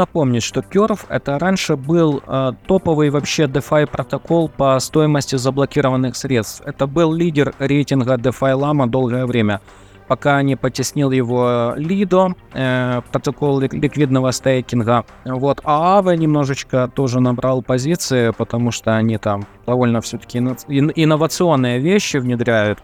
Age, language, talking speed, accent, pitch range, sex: 20-39, Russian, 125 wpm, native, 120-150 Hz, male